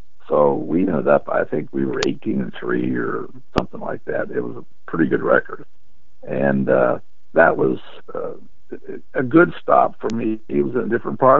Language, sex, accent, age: English, male, American, 60-79